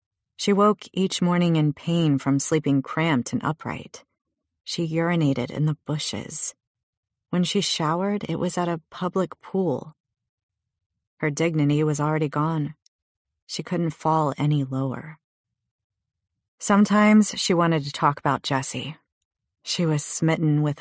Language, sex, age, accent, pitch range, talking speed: English, female, 30-49, American, 135-170 Hz, 135 wpm